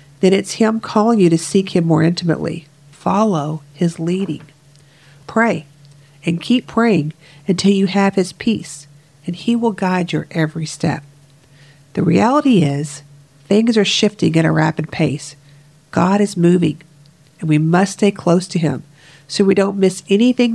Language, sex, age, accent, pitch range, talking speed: English, female, 50-69, American, 150-195 Hz, 160 wpm